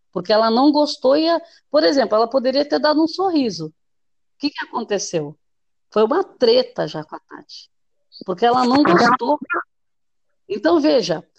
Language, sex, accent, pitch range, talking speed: Portuguese, female, Brazilian, 210-305 Hz, 165 wpm